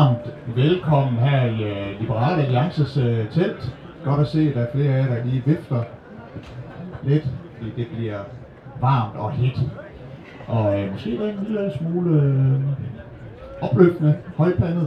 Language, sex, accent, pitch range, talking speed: Danish, male, native, 125-155 Hz, 150 wpm